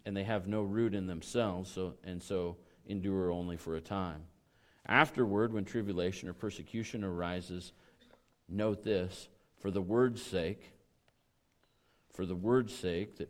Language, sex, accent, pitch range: English, male, American, 90-115 Hz